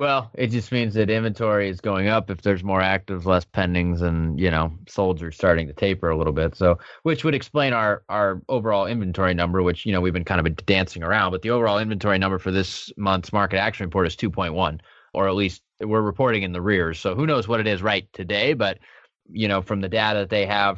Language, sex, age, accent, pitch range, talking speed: English, male, 20-39, American, 95-115 Hz, 240 wpm